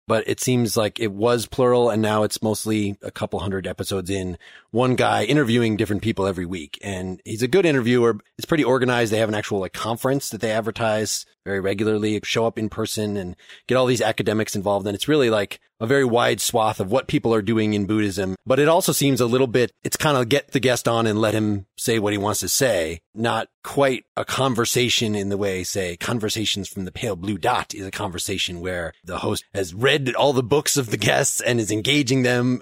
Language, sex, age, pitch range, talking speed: English, male, 30-49, 100-130 Hz, 225 wpm